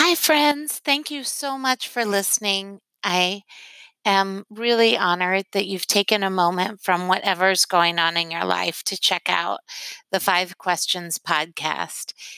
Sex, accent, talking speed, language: female, American, 150 wpm, English